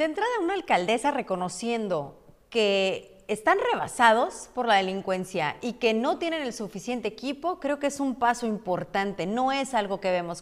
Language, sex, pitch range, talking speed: Spanish, female, 205-260 Hz, 165 wpm